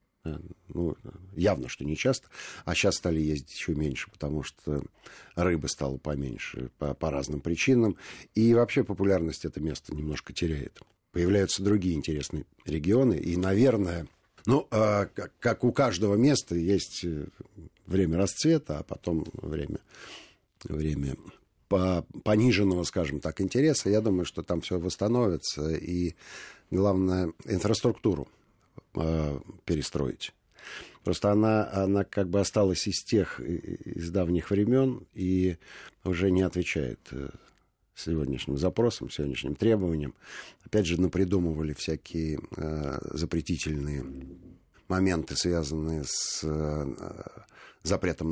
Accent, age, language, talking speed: native, 50-69, Russian, 110 wpm